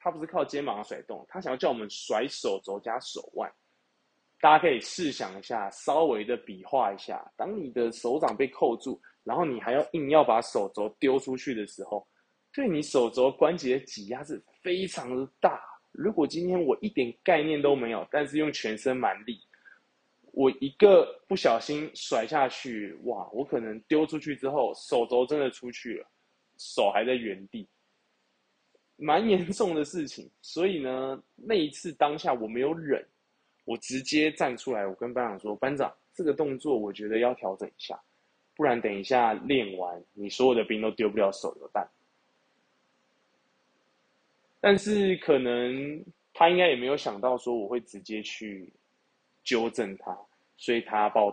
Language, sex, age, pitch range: Chinese, male, 20-39, 115-155 Hz